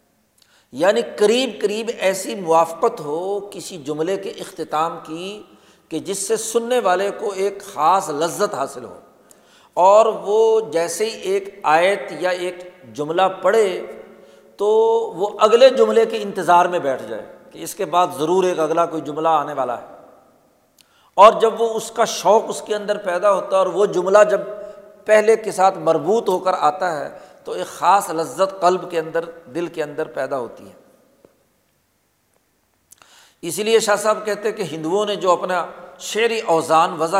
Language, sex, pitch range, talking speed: Urdu, male, 165-205 Hz, 170 wpm